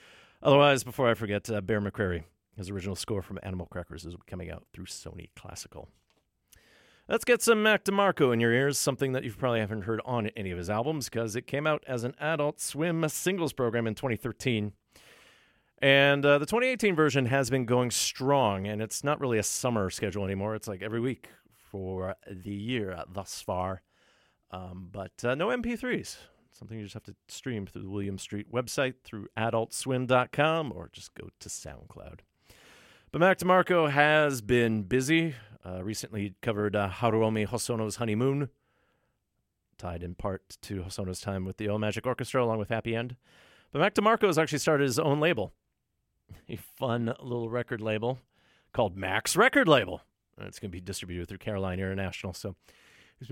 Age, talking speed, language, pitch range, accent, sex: 40-59, 175 wpm, English, 100-135 Hz, American, male